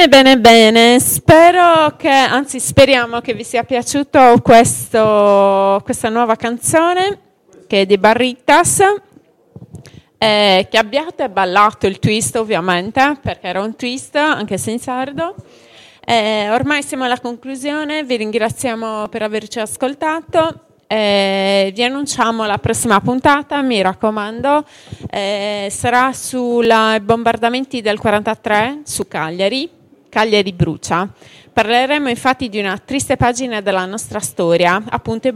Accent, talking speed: native, 120 wpm